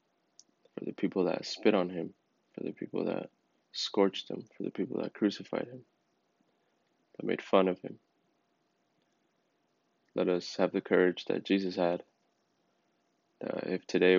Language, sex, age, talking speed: English, male, 20-39, 150 wpm